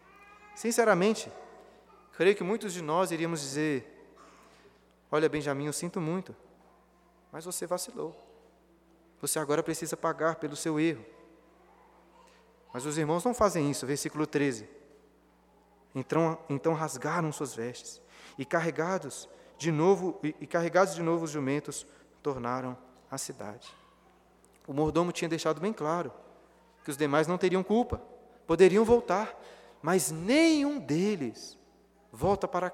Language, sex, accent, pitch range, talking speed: Portuguese, male, Brazilian, 155-215 Hz, 120 wpm